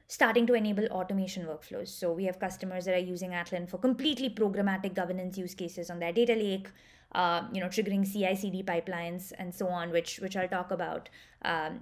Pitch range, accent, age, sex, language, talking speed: 180-220 Hz, Indian, 20-39, female, English, 195 wpm